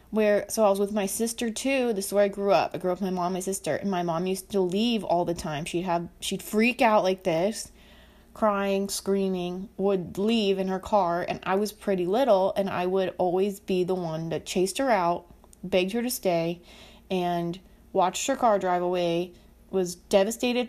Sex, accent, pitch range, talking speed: female, American, 185-230 Hz, 215 wpm